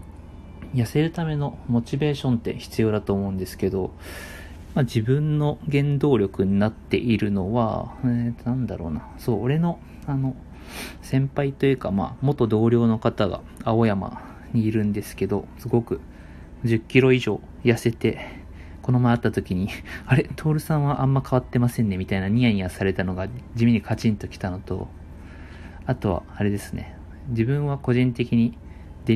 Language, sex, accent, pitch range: Japanese, male, native, 85-125 Hz